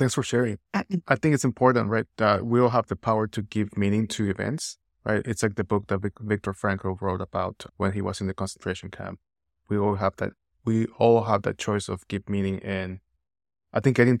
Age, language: 20-39, English